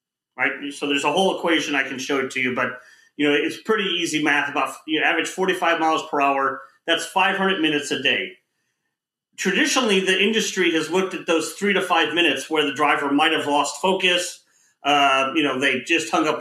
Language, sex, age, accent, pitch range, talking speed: English, male, 30-49, American, 150-185 Hz, 200 wpm